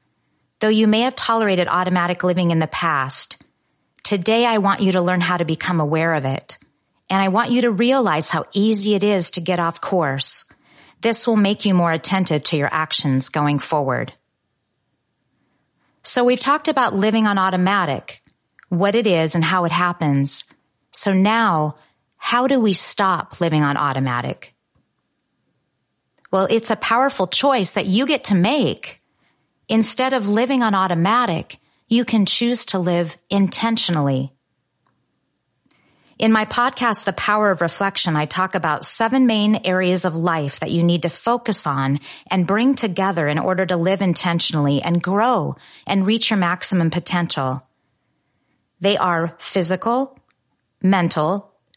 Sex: female